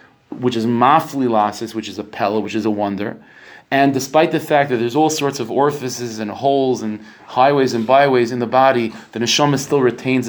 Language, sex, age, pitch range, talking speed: English, male, 40-59, 120-150 Hz, 200 wpm